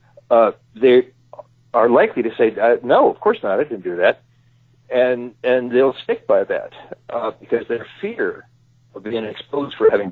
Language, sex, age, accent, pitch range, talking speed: English, male, 60-79, American, 115-130 Hz, 180 wpm